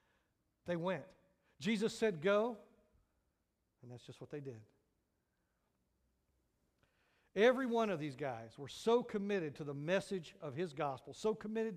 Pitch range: 145-205 Hz